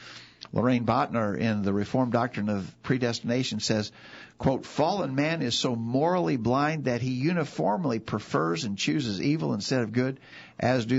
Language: English